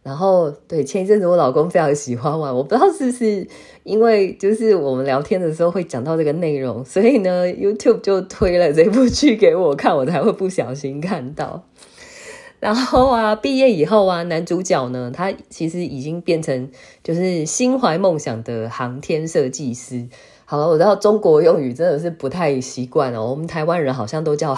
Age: 20-39